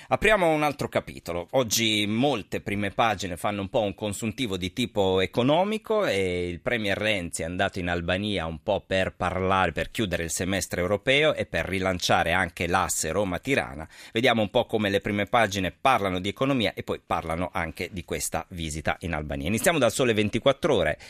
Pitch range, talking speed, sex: 95-120 Hz, 180 wpm, male